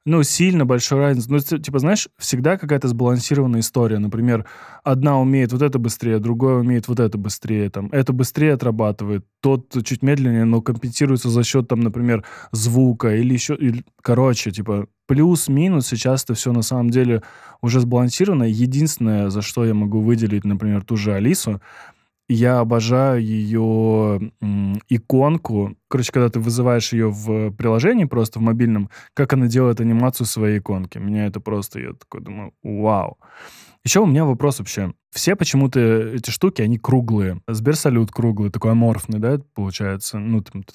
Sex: male